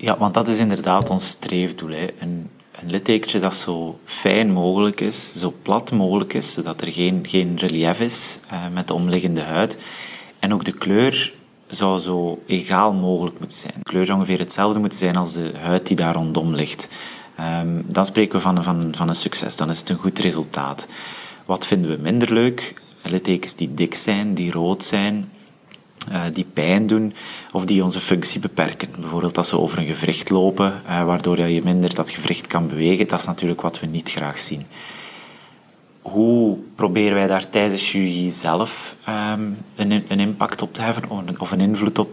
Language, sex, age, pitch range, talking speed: Dutch, male, 30-49, 85-100 Hz, 190 wpm